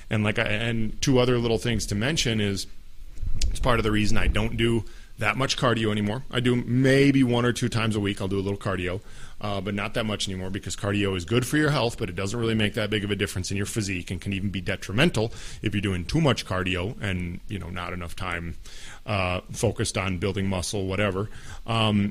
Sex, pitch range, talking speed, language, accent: male, 100-125 Hz, 235 wpm, English, American